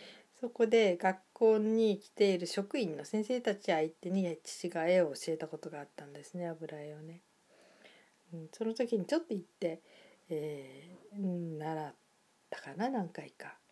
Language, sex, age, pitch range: Japanese, female, 40-59, 160-215 Hz